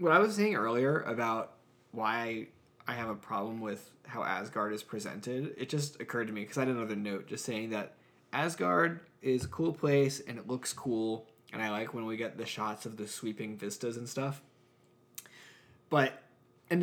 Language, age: English, 20-39